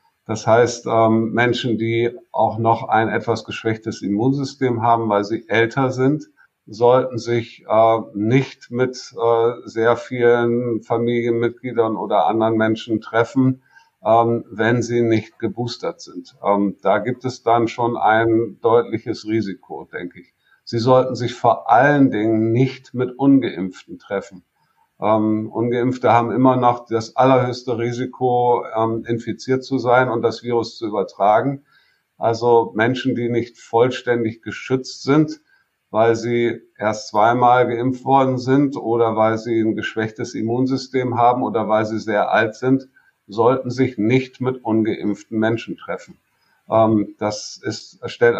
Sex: male